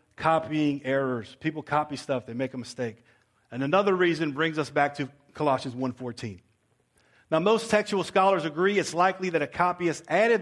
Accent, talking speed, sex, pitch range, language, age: American, 165 wpm, male, 125-170 Hz, English, 40-59